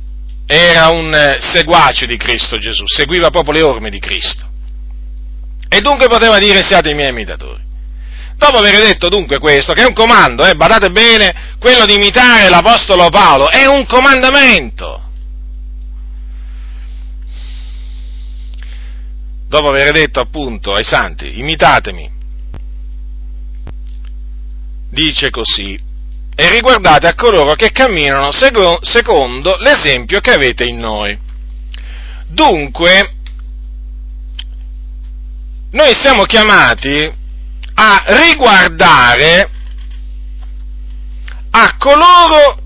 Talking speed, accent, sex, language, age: 95 wpm, native, male, Italian, 40-59